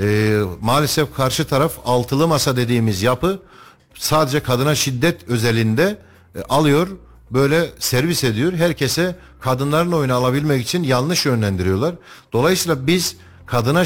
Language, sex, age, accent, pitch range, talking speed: Turkish, male, 60-79, native, 120-150 Hz, 115 wpm